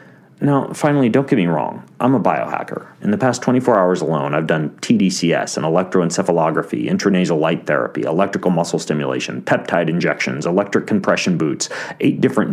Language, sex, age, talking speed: English, male, 30-49, 160 wpm